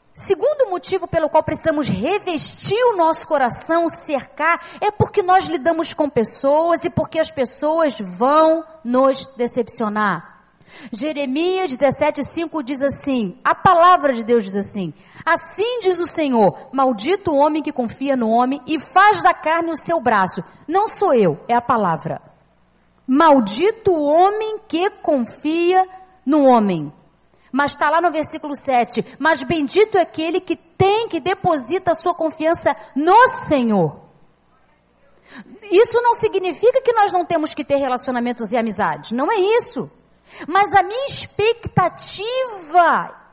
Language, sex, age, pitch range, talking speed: Portuguese, female, 40-59, 255-365 Hz, 140 wpm